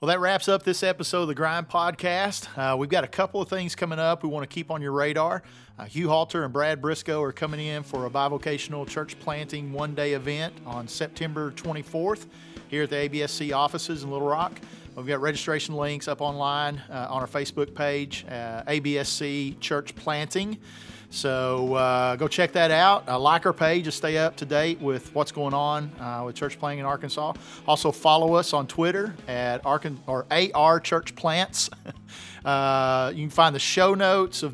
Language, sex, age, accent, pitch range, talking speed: English, male, 40-59, American, 140-160 Hz, 195 wpm